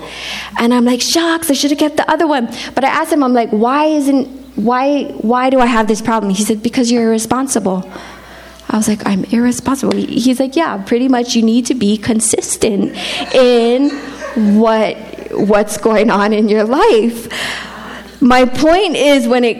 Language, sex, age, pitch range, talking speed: English, female, 20-39, 225-285 Hz, 180 wpm